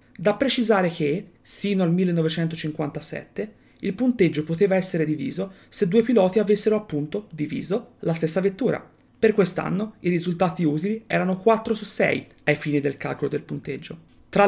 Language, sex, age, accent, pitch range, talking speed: Italian, female, 30-49, native, 155-205 Hz, 150 wpm